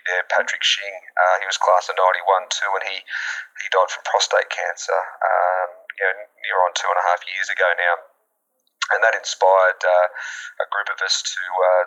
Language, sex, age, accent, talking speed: English, male, 20-39, Australian, 200 wpm